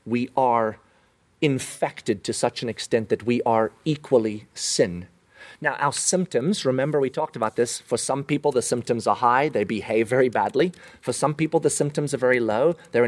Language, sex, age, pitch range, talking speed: English, male, 30-49, 110-135 Hz, 185 wpm